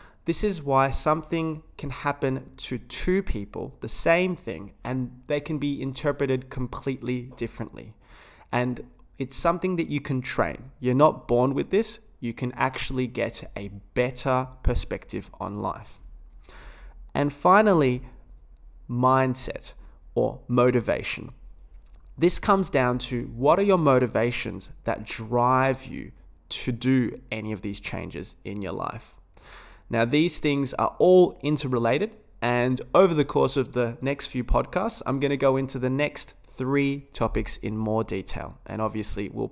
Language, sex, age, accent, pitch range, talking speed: English, male, 20-39, Australian, 110-145 Hz, 145 wpm